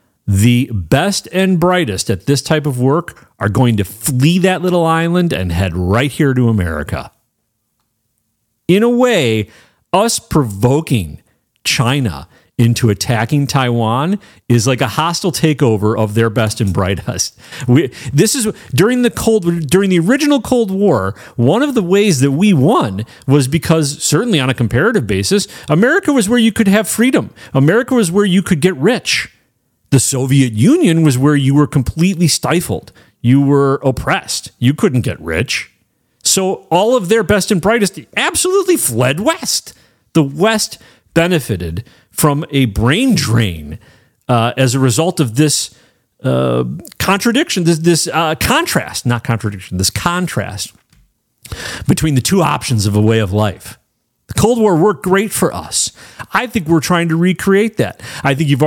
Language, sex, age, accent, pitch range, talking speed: English, male, 40-59, American, 115-180 Hz, 160 wpm